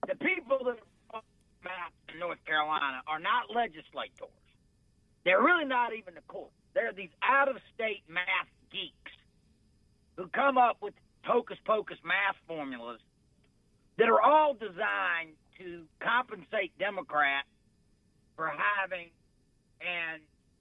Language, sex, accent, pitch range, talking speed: English, male, American, 165-235 Hz, 110 wpm